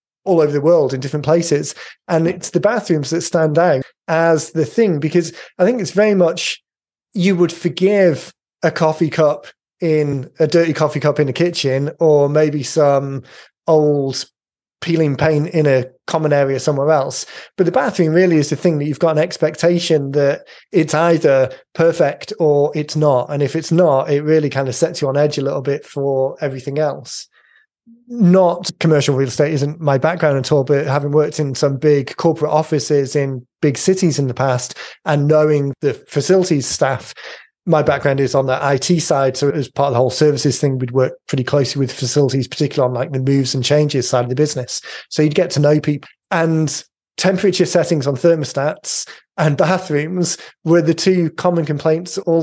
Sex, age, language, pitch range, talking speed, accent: male, 30-49, English, 140-170 Hz, 190 wpm, British